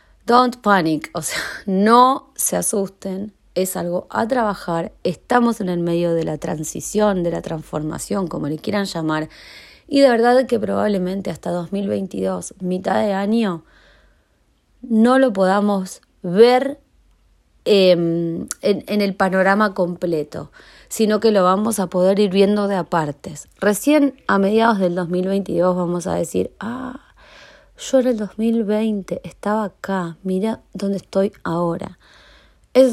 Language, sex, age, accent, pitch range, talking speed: Spanish, female, 30-49, Argentinian, 180-225 Hz, 135 wpm